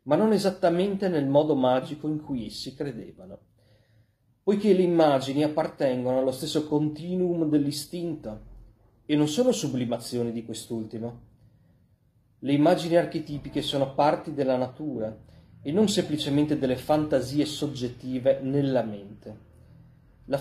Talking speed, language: 120 wpm, Italian